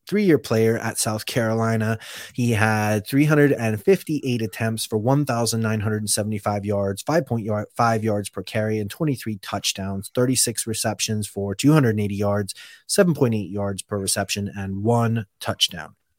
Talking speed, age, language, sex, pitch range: 115 wpm, 20-39, English, male, 105-120 Hz